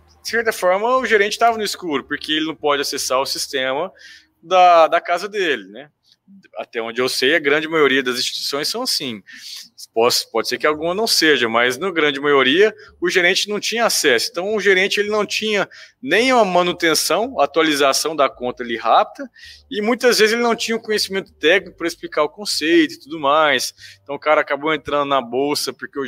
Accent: Brazilian